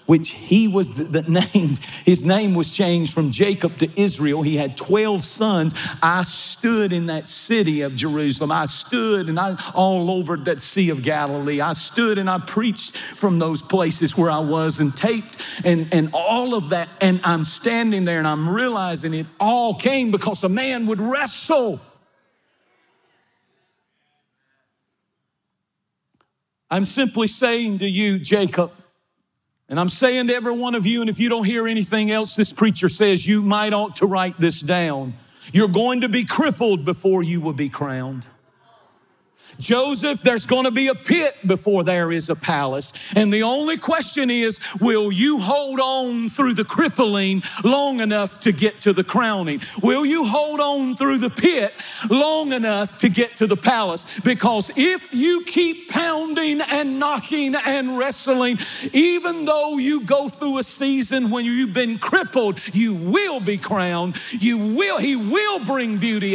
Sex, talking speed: male, 165 wpm